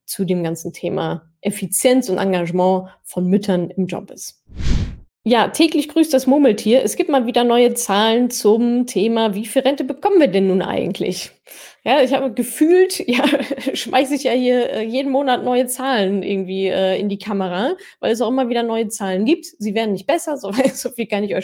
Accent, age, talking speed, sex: German, 20-39, 190 wpm, female